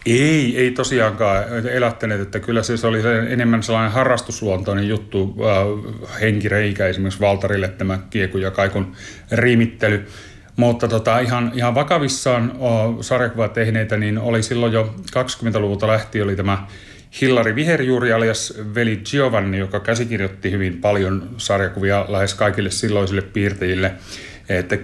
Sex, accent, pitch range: male, native, 100-115 Hz